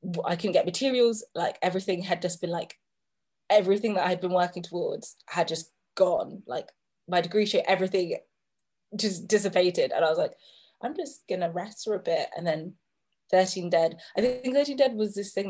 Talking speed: 185 wpm